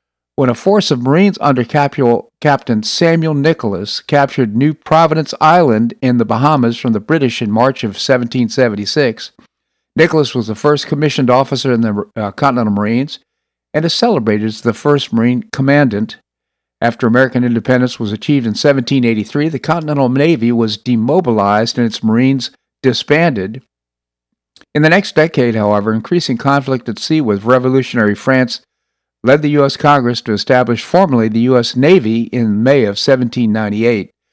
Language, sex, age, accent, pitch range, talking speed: English, male, 50-69, American, 115-140 Hz, 145 wpm